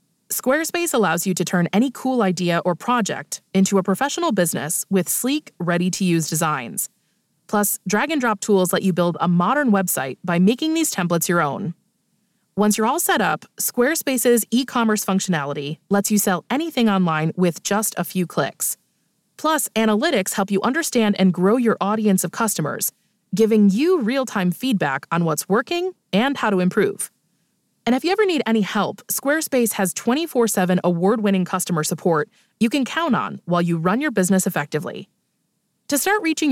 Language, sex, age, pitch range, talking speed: English, female, 20-39, 180-245 Hz, 165 wpm